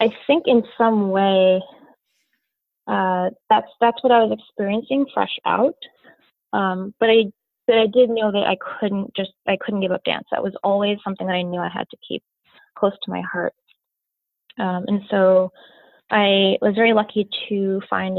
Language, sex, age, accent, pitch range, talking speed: English, female, 20-39, American, 180-215 Hz, 180 wpm